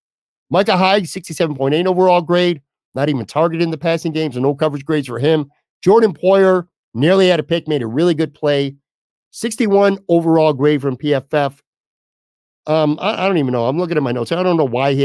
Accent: American